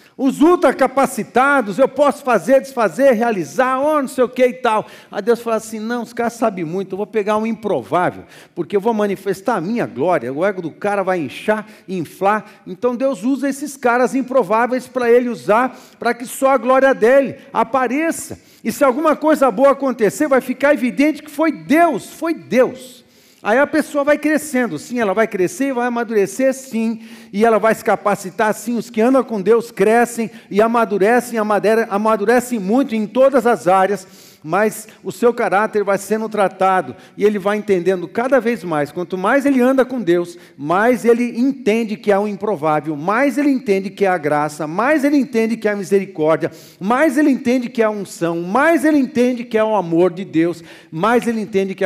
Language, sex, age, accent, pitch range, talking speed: Portuguese, male, 50-69, Brazilian, 195-255 Hz, 195 wpm